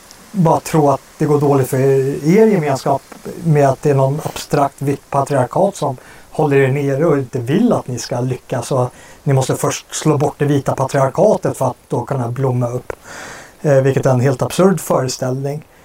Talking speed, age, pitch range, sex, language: 195 wpm, 30-49, 130-155 Hz, male, Swedish